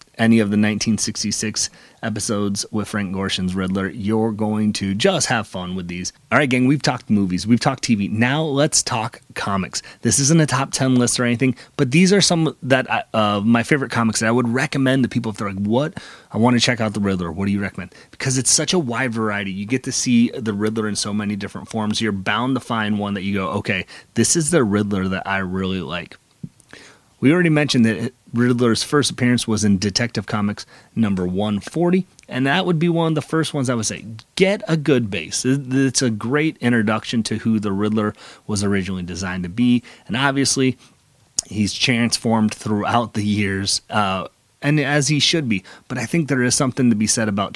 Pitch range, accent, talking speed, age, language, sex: 100-130 Hz, American, 210 wpm, 30-49, English, male